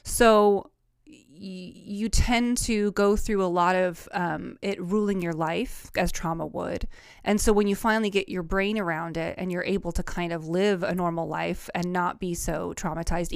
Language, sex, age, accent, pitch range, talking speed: English, female, 20-39, American, 175-200 Hz, 190 wpm